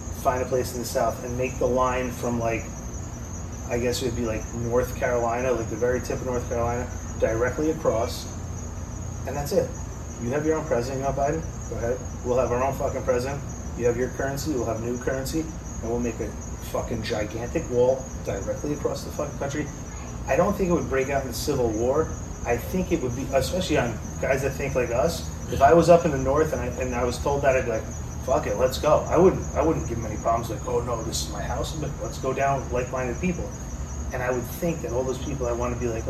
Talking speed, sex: 240 wpm, male